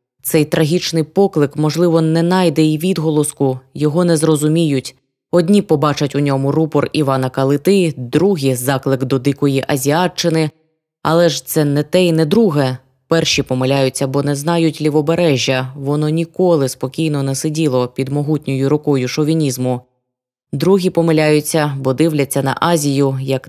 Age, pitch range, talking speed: 20-39, 135-165 Hz, 140 wpm